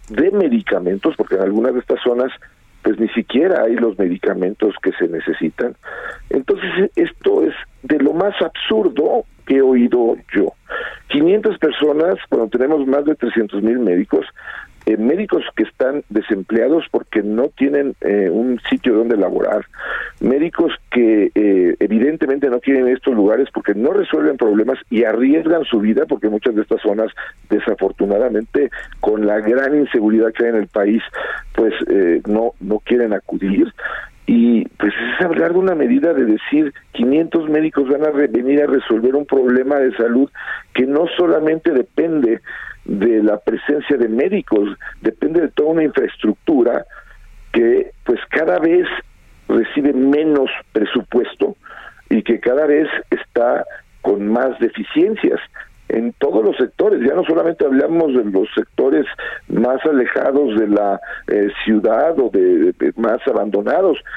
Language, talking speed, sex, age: Spanish, 150 wpm, male, 50-69